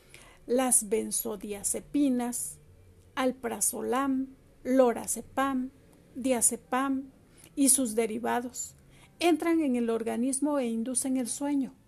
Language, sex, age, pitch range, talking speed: Spanish, female, 50-69, 230-275 Hz, 80 wpm